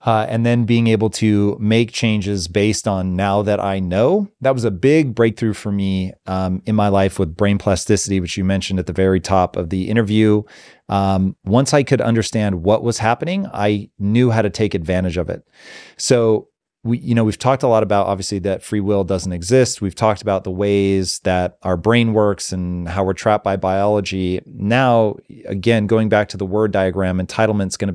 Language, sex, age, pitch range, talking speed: English, male, 30-49, 100-115 Hz, 205 wpm